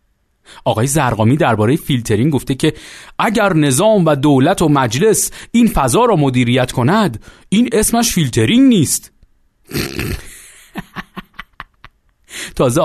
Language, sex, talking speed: Persian, male, 105 wpm